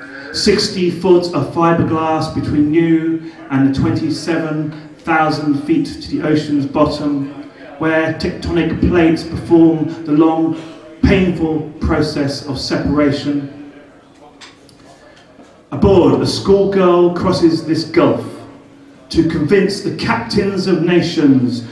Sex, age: male, 40-59